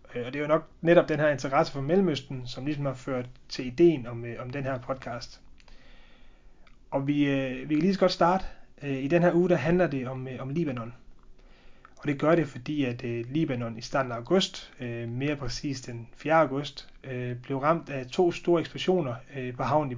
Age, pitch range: 30-49, 125-155 Hz